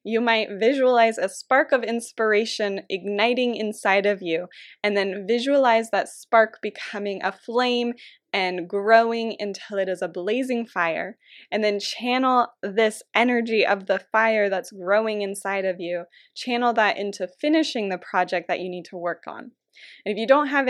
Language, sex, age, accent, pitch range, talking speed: English, female, 20-39, American, 195-230 Hz, 165 wpm